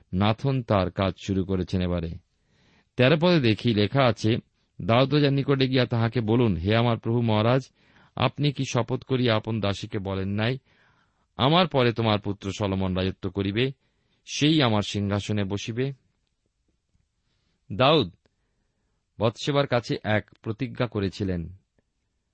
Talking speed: 120 wpm